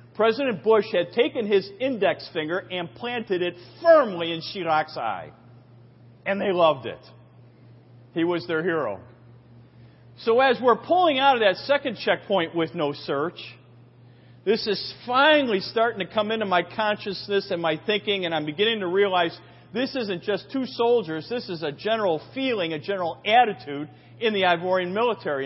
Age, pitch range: 40-59, 160-225 Hz